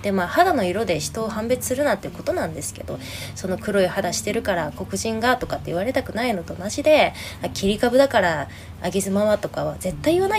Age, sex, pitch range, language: 20-39, female, 175-285 Hz, Japanese